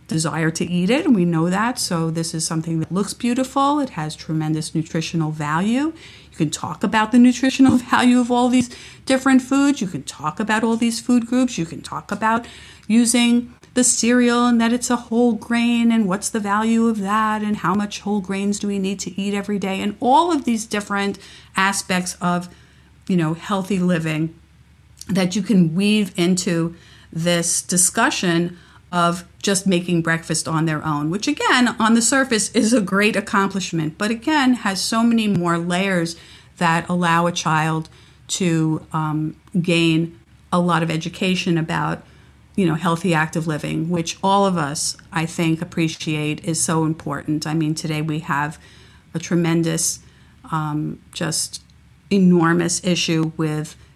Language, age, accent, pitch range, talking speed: English, 50-69, American, 165-220 Hz, 170 wpm